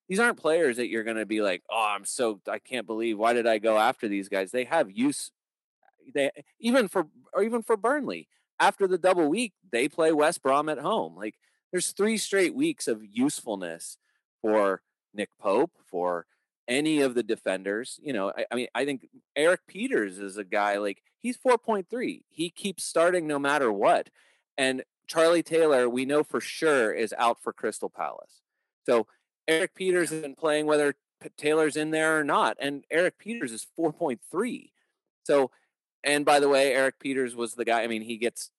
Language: English